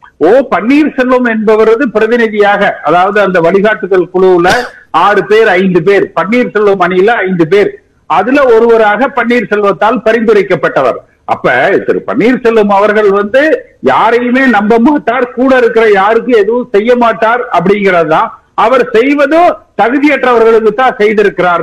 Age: 50-69